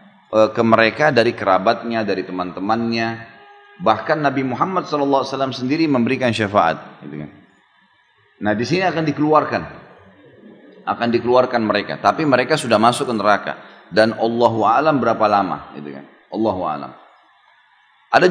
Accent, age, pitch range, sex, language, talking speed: native, 30-49, 115-150 Hz, male, Indonesian, 110 wpm